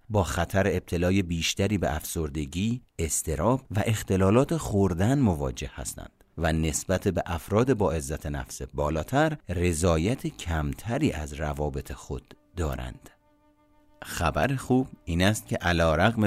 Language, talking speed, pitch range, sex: Persian, 120 wpm, 80-105 Hz, male